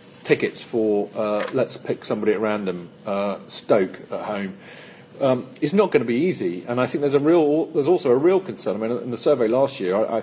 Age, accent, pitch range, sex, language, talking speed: 40-59, British, 110-145 Hz, male, English, 230 wpm